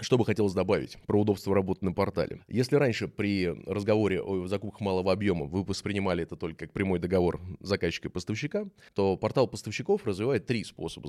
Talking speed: 180 wpm